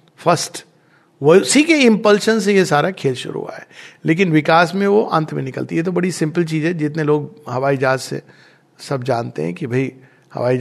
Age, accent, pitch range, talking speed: 60-79, Indian, 135-175 Hz, 200 wpm